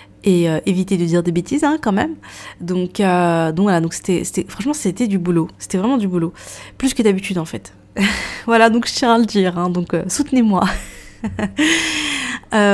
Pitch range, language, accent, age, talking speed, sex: 170-205 Hz, French, French, 20-39, 185 wpm, female